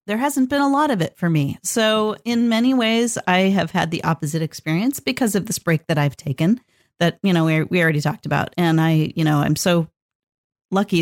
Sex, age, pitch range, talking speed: female, 40-59, 160-215 Hz, 225 wpm